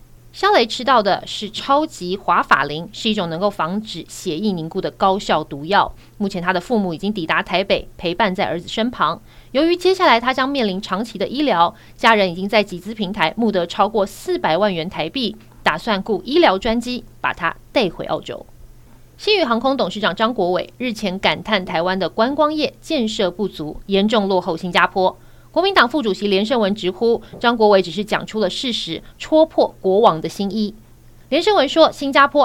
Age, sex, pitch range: 30-49, female, 180-230 Hz